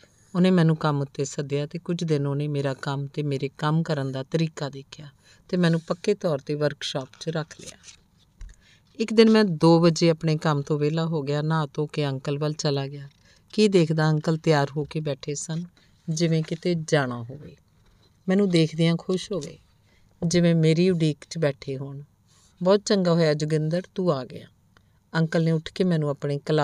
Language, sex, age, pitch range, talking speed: Punjabi, female, 50-69, 140-170 Hz, 170 wpm